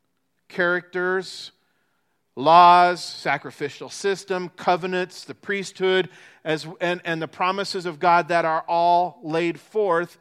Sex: male